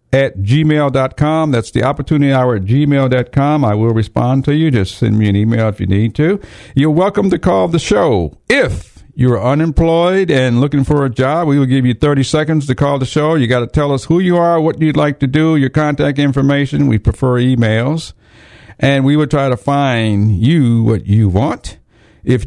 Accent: American